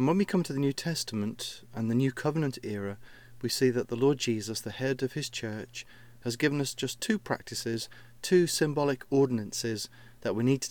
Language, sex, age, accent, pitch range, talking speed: English, male, 30-49, British, 115-130 Hz, 205 wpm